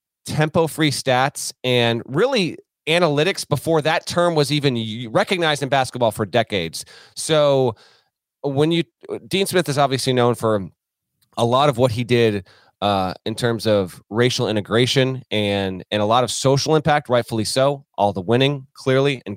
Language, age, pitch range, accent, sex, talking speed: English, 30-49, 105-145 Hz, American, male, 160 wpm